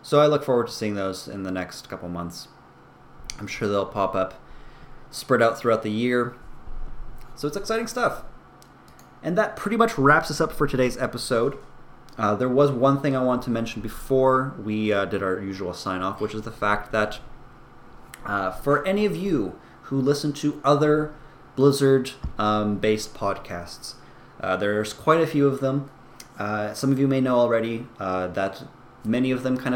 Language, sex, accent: English, male, American